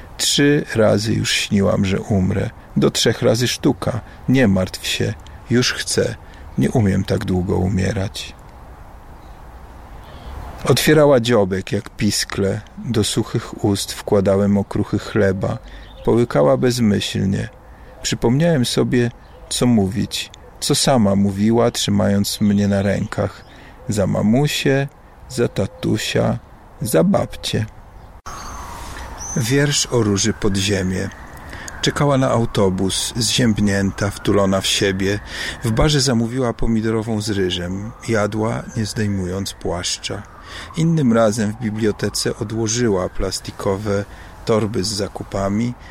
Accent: native